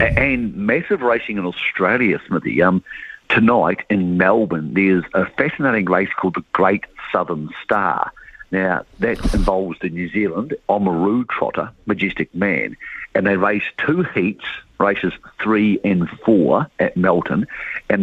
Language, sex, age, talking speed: English, male, 50-69, 135 wpm